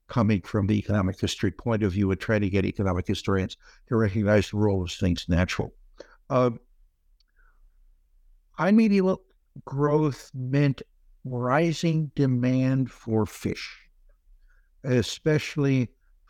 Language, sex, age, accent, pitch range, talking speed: English, male, 60-79, American, 110-145 Hz, 110 wpm